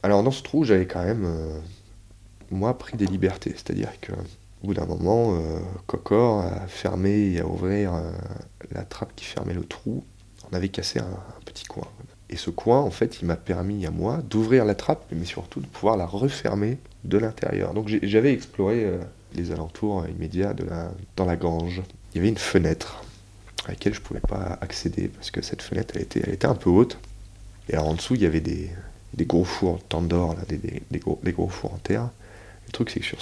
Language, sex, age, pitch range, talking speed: French, male, 30-49, 90-105 Hz, 210 wpm